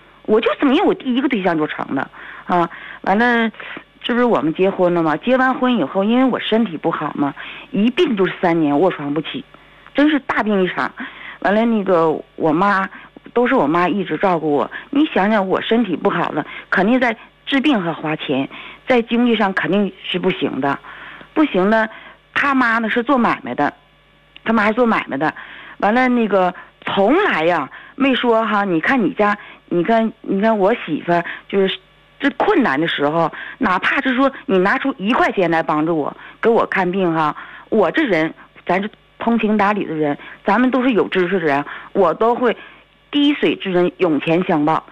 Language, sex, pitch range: Chinese, female, 180-255 Hz